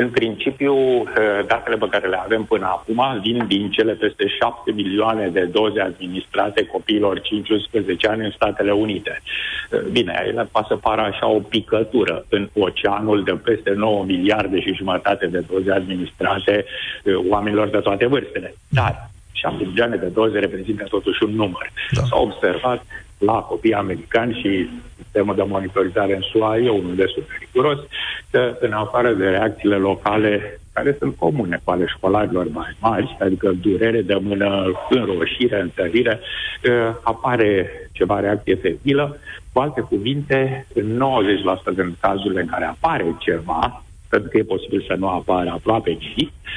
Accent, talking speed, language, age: native, 150 wpm, Romanian, 60-79